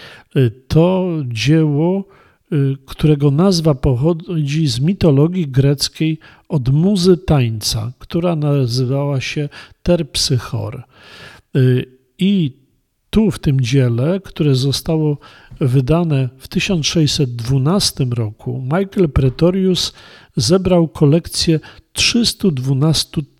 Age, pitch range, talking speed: 50-69, 135-165 Hz, 80 wpm